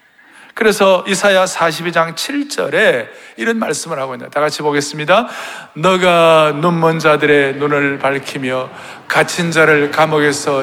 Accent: native